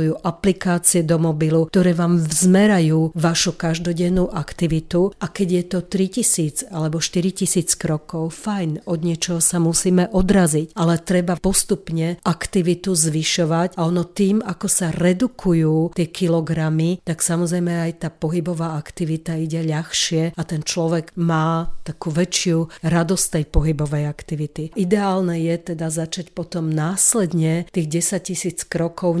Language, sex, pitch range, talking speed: Slovak, female, 165-180 Hz, 130 wpm